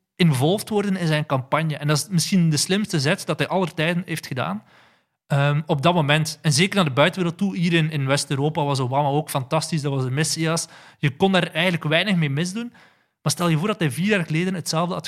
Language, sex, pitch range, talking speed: Dutch, male, 145-170 Hz, 230 wpm